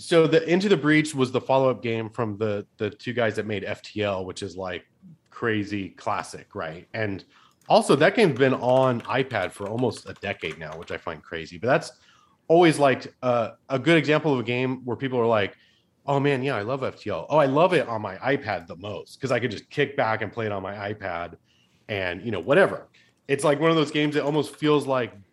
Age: 30-49